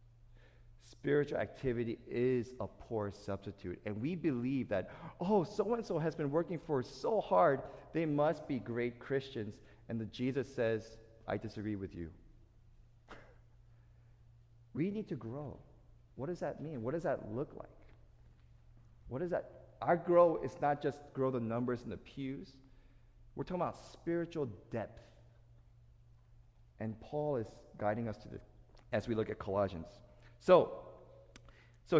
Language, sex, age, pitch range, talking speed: English, male, 40-59, 115-155 Hz, 145 wpm